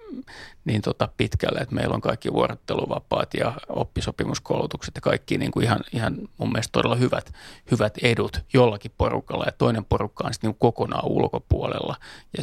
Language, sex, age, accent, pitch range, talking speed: Finnish, male, 30-49, native, 105-120 Hz, 160 wpm